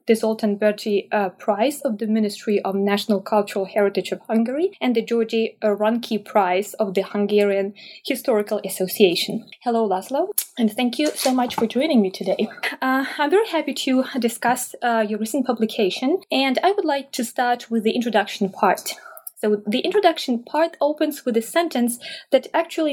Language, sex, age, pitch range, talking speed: English, female, 20-39, 210-280 Hz, 170 wpm